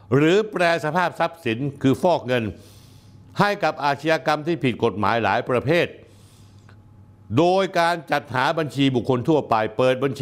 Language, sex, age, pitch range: Thai, male, 60-79, 105-145 Hz